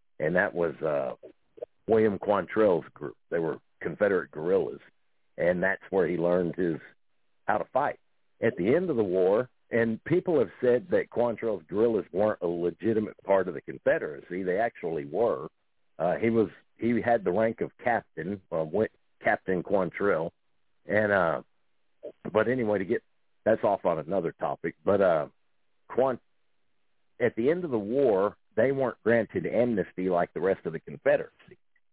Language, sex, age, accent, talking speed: English, male, 60-79, American, 170 wpm